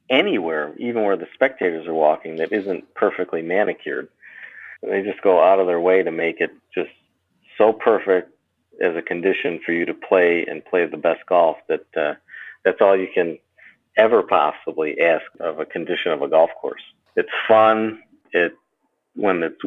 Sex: male